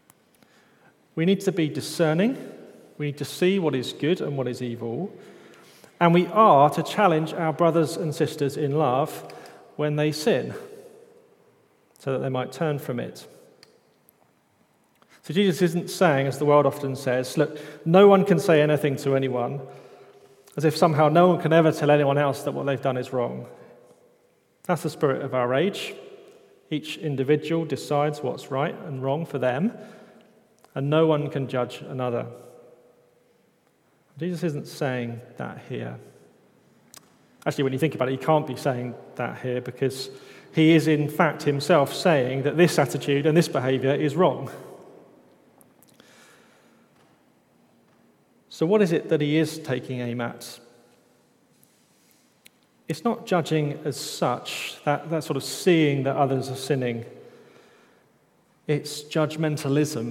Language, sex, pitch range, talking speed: English, male, 135-170 Hz, 150 wpm